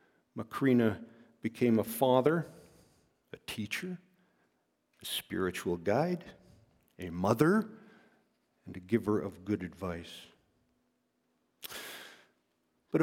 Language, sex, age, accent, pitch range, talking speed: English, male, 50-69, American, 120-150 Hz, 85 wpm